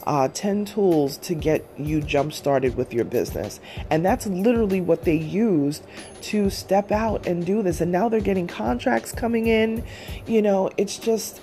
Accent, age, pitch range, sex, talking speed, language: American, 30-49, 135-170 Hz, female, 175 wpm, English